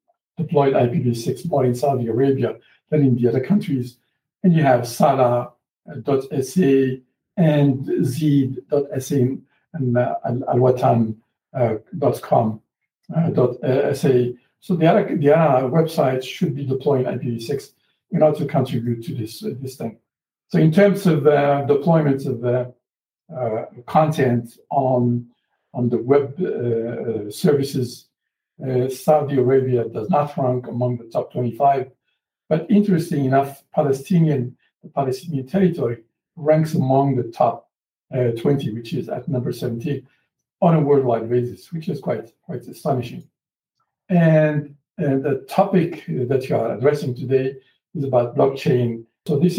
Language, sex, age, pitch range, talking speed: English, male, 60-79, 125-155 Hz, 130 wpm